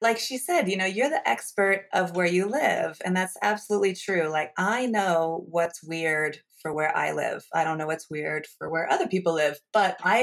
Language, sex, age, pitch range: English, female, 30-49, 160-190 Hz